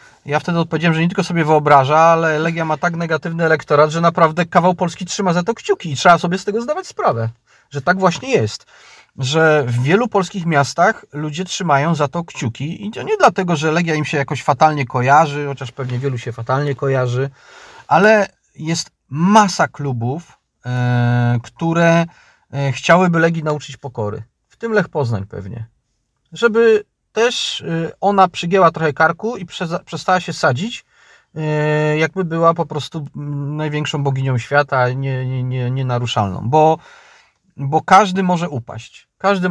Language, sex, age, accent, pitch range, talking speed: Polish, male, 30-49, native, 135-175 Hz, 155 wpm